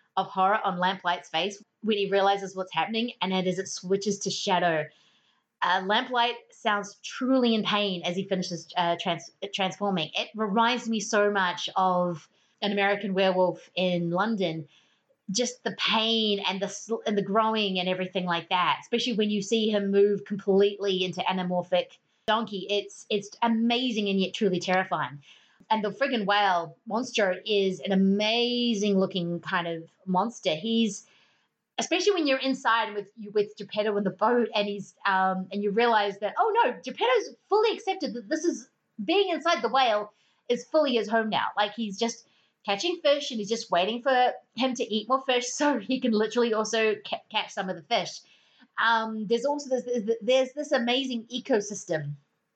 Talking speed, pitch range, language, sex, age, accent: 175 wpm, 190-235 Hz, English, female, 30-49, Australian